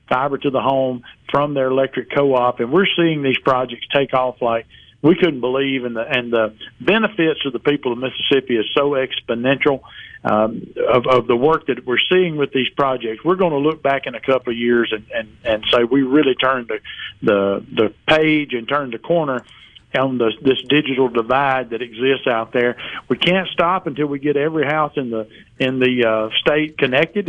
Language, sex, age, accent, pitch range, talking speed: English, male, 50-69, American, 125-150 Hz, 205 wpm